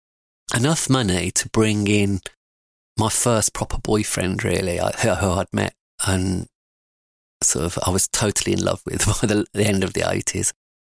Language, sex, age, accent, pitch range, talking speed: English, male, 30-49, British, 95-110 Hz, 160 wpm